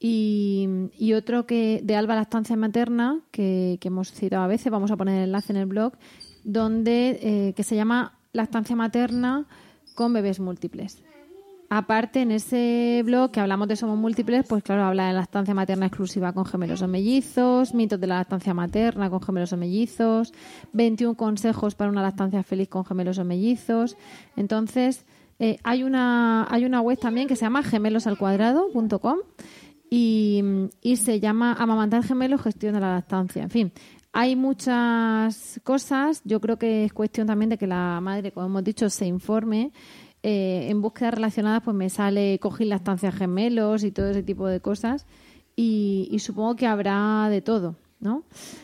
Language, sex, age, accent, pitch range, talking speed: Spanish, female, 20-39, Spanish, 200-240 Hz, 170 wpm